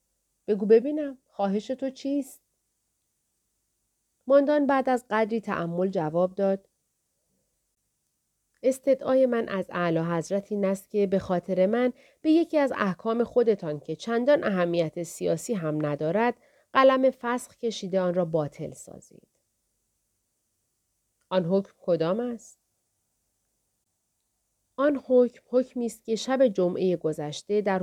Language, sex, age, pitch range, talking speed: Persian, female, 40-59, 155-240 Hz, 110 wpm